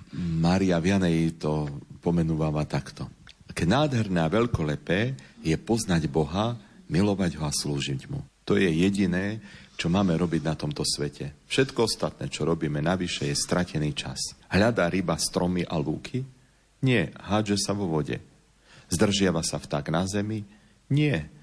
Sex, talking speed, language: male, 140 wpm, Slovak